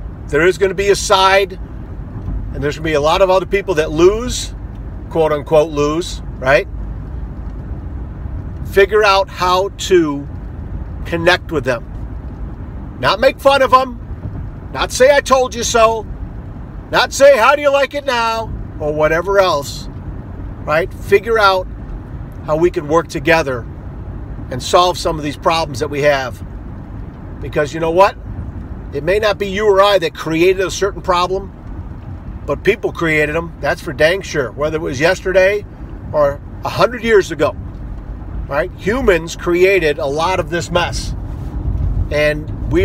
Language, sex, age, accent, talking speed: English, male, 50-69, American, 155 wpm